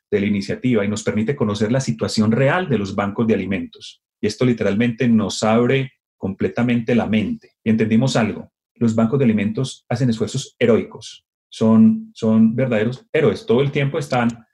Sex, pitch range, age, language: male, 110-140 Hz, 30-49, Spanish